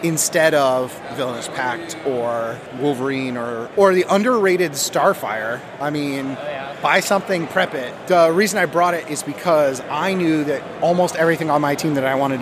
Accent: American